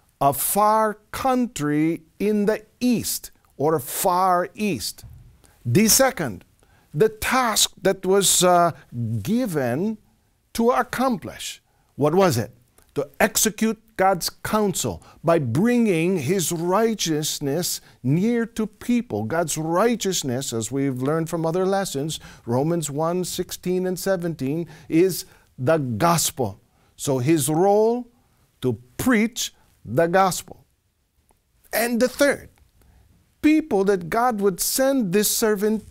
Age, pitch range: 50-69, 145-245 Hz